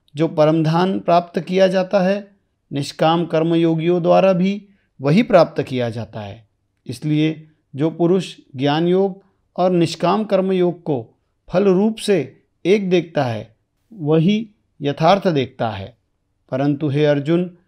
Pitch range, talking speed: 140-185 Hz, 125 wpm